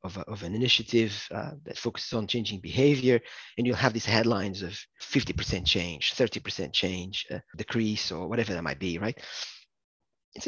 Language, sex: English, male